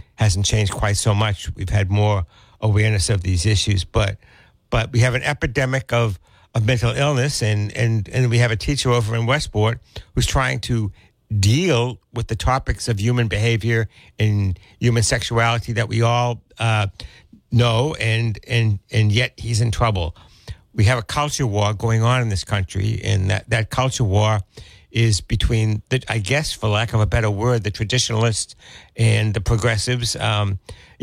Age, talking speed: 60-79, 170 wpm